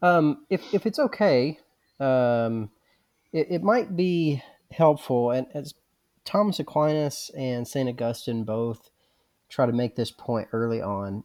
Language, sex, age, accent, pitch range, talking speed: English, male, 30-49, American, 105-130 Hz, 140 wpm